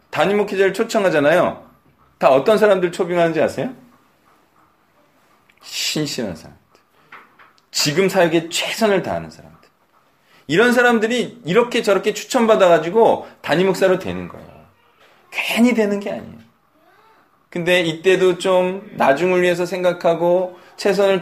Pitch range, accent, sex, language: 160-215 Hz, native, male, Korean